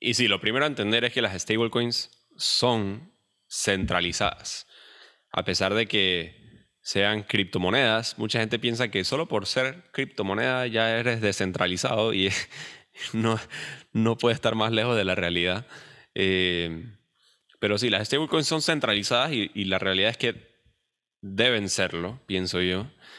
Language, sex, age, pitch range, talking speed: Spanish, male, 10-29, 95-120 Hz, 145 wpm